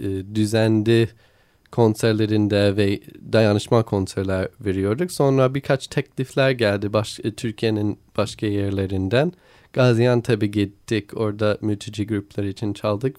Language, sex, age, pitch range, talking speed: Turkish, male, 20-39, 105-130 Hz, 95 wpm